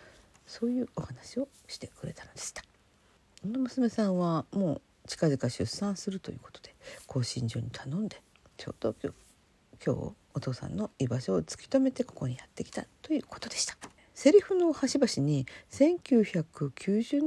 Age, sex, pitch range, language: 50-69, female, 140-215 Hz, Japanese